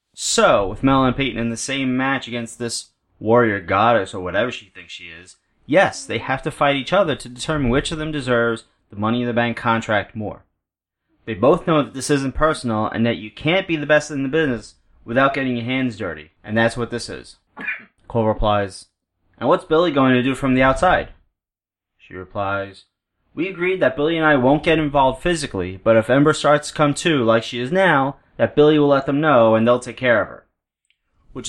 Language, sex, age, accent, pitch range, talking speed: English, male, 30-49, American, 115-150 Hz, 215 wpm